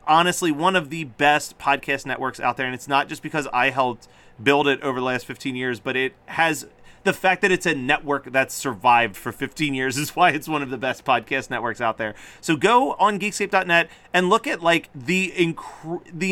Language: English